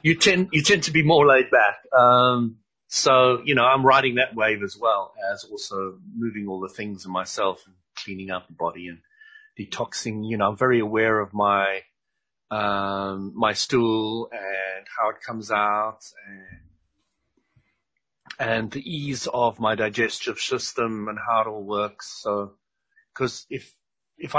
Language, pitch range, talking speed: English, 100-125 Hz, 160 wpm